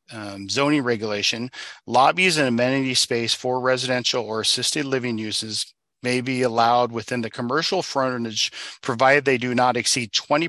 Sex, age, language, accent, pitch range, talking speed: male, 40-59, English, American, 110-130 Hz, 150 wpm